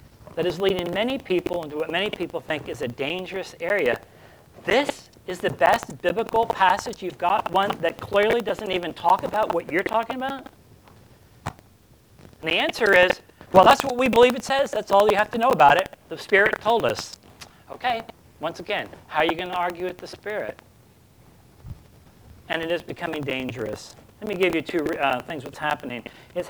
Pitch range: 145-205 Hz